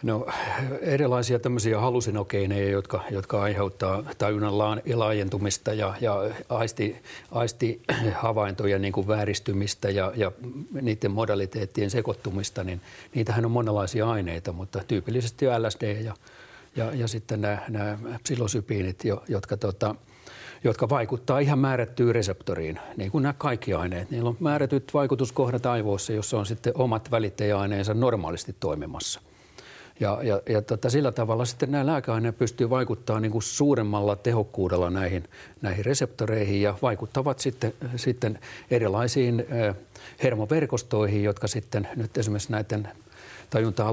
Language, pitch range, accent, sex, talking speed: Finnish, 100-120 Hz, native, male, 120 wpm